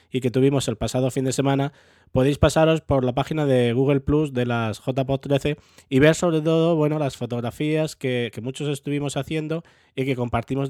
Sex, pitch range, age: male, 125-150 Hz, 20-39